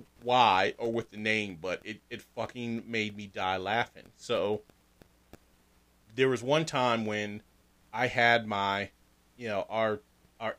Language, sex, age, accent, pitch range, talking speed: English, male, 30-49, American, 100-120 Hz, 145 wpm